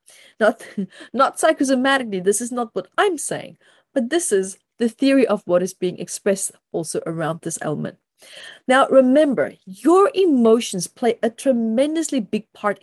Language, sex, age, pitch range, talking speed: English, female, 30-49, 200-275 Hz, 150 wpm